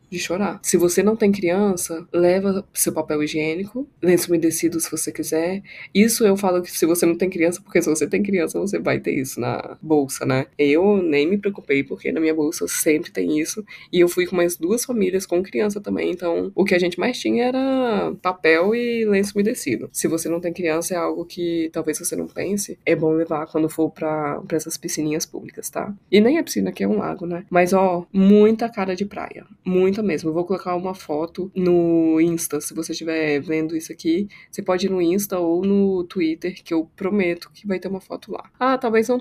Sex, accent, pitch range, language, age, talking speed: female, Brazilian, 165-195 Hz, Portuguese, 20-39, 220 wpm